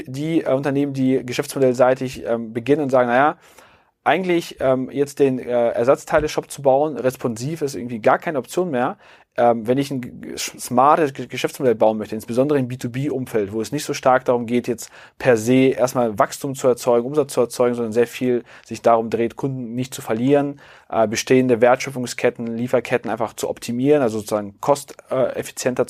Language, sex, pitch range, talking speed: German, male, 105-130 Hz, 160 wpm